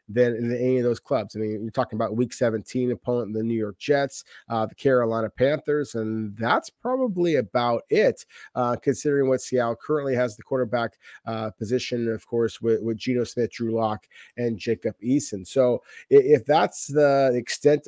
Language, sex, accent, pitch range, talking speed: English, male, American, 115-140 Hz, 180 wpm